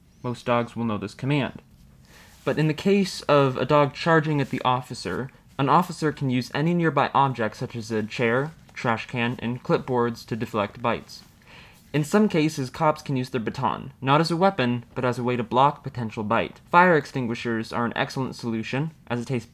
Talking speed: 195 wpm